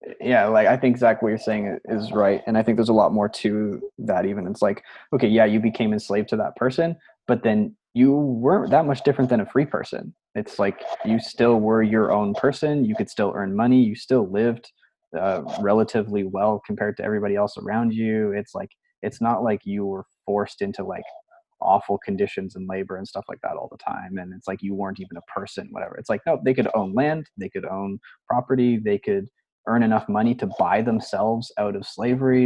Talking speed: 220 wpm